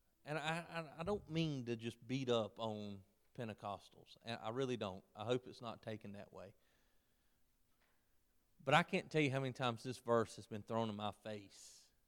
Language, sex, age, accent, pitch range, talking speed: English, male, 40-59, American, 105-150 Hz, 185 wpm